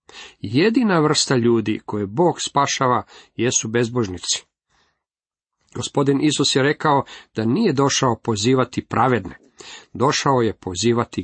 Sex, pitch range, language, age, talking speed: male, 110-150 Hz, Croatian, 50-69, 105 wpm